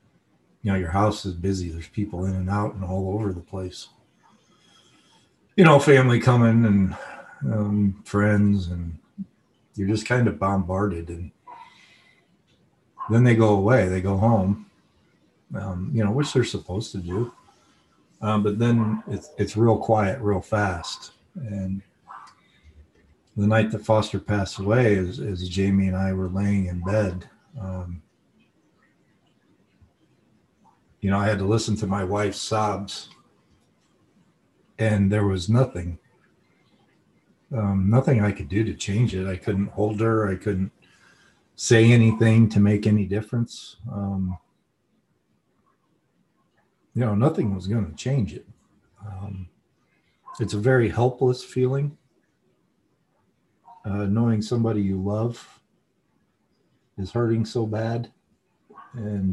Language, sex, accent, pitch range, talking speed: English, male, American, 95-115 Hz, 130 wpm